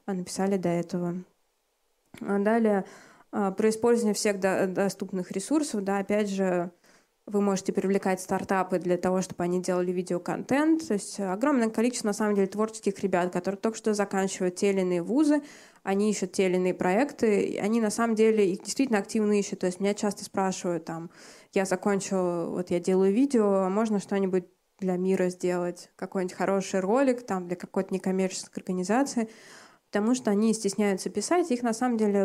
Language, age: Russian, 20-39